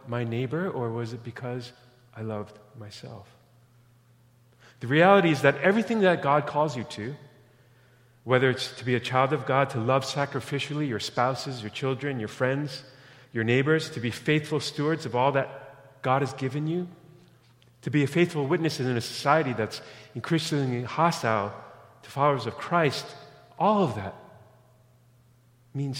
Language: English